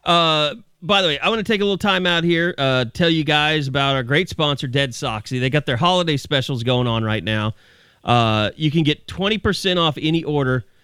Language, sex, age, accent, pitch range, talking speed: English, male, 30-49, American, 125-170 Hz, 220 wpm